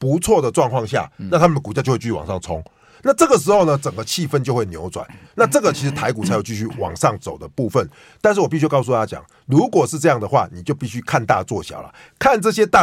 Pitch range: 105-150 Hz